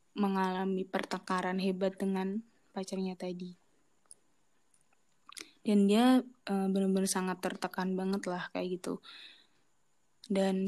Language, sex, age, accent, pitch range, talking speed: Indonesian, female, 20-39, native, 185-200 Hz, 95 wpm